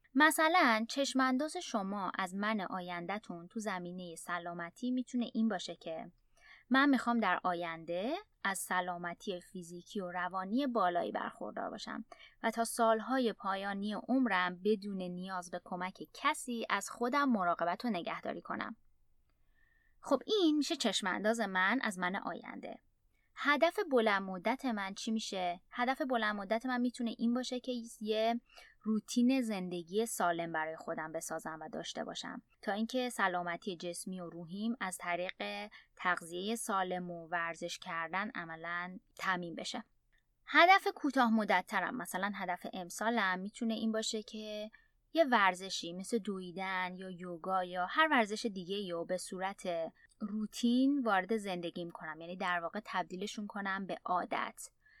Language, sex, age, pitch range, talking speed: Persian, female, 20-39, 180-235 Hz, 135 wpm